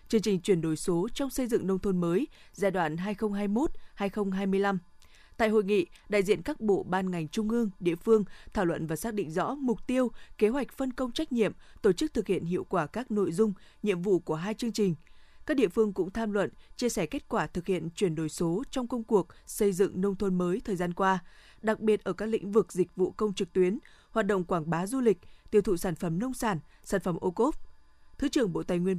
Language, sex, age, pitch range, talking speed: Vietnamese, female, 20-39, 180-225 Hz, 235 wpm